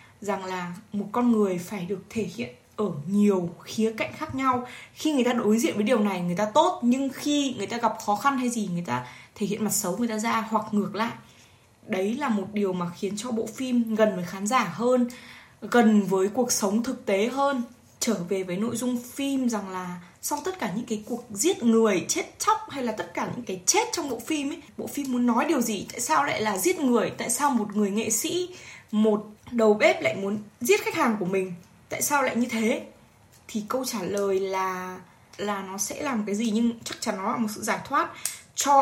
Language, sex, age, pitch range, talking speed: Vietnamese, female, 20-39, 195-250 Hz, 230 wpm